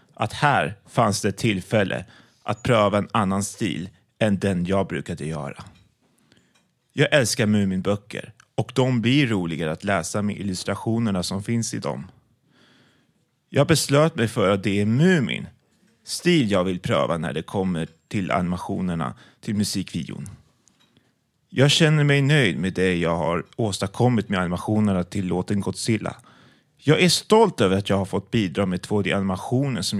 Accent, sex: native, male